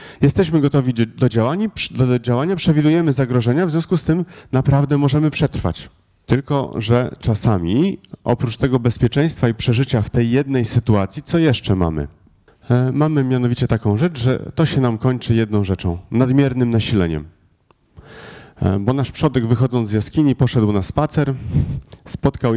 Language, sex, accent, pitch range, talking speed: Polish, male, native, 105-140 Hz, 135 wpm